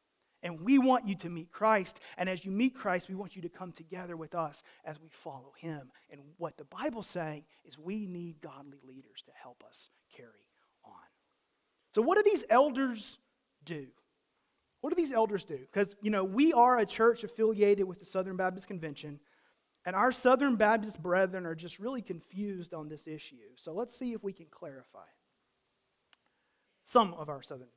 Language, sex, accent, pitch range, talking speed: English, male, American, 175-245 Hz, 185 wpm